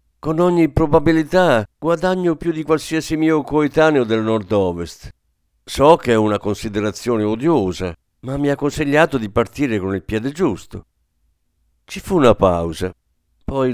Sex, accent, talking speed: male, native, 140 wpm